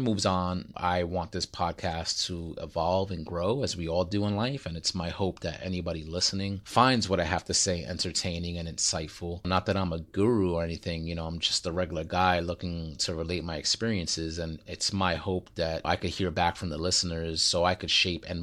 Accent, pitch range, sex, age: American, 80-95 Hz, male, 30-49